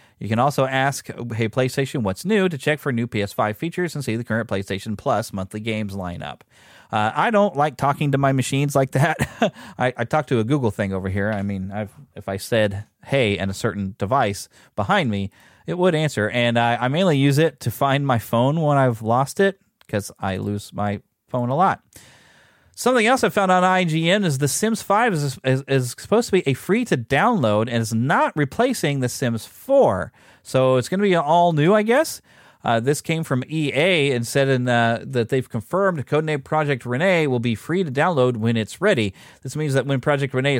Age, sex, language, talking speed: 30-49, male, English, 210 wpm